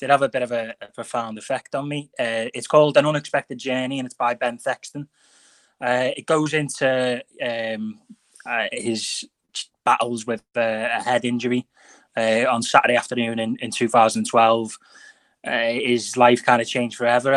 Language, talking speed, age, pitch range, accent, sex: English, 165 wpm, 20-39, 115-135 Hz, British, male